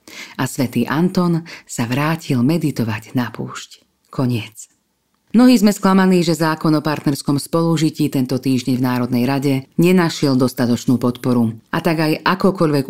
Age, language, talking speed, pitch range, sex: 40-59, Slovak, 135 wpm, 125-165 Hz, female